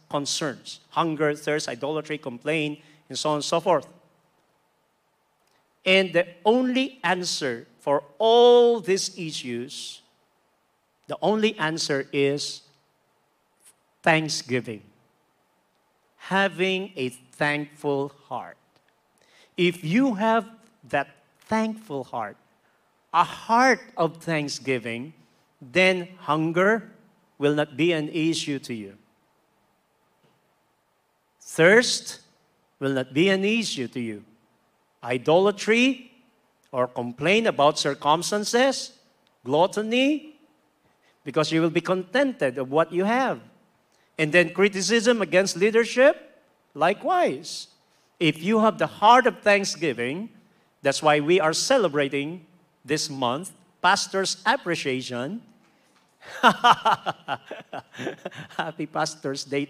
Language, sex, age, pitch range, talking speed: Filipino, male, 50-69, 140-210 Hz, 95 wpm